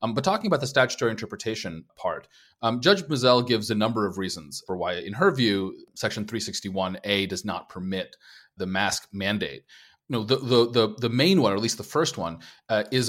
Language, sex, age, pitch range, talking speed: English, male, 30-49, 100-125 Hz, 205 wpm